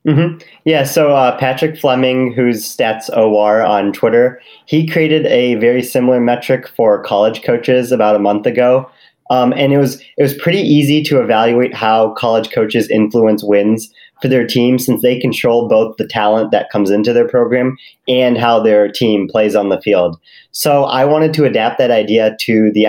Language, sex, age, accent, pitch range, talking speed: English, male, 30-49, American, 110-130 Hz, 185 wpm